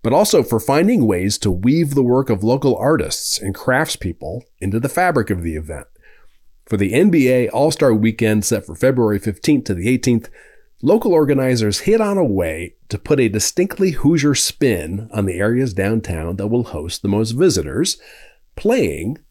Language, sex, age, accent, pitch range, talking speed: English, male, 40-59, American, 95-140 Hz, 170 wpm